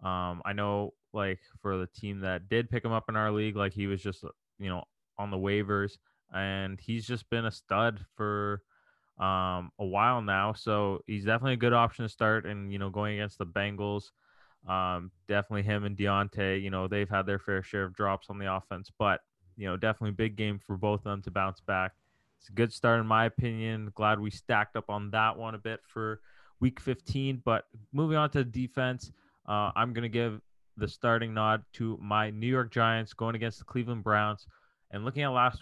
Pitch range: 100-115 Hz